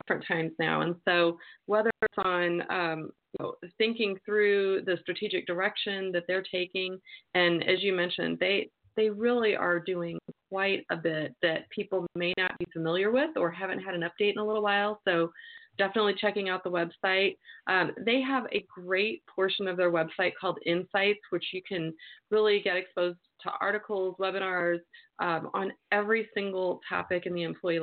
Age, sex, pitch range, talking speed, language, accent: 30-49, female, 170-205 Hz, 170 wpm, English, American